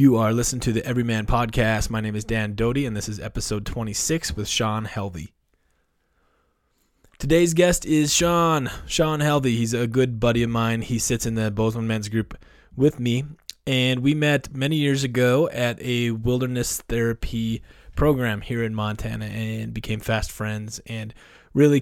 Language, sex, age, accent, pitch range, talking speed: English, male, 20-39, American, 110-130 Hz, 170 wpm